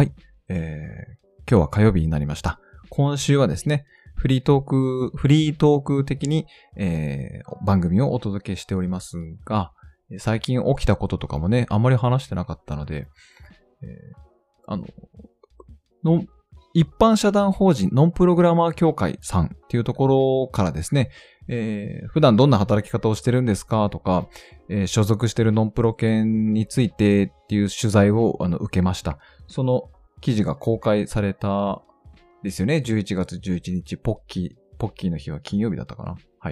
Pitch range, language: 90-130 Hz, Japanese